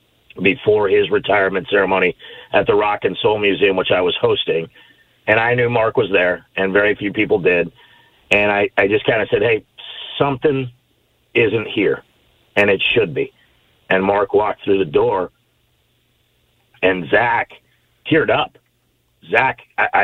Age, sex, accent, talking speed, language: 50-69, male, American, 155 wpm, English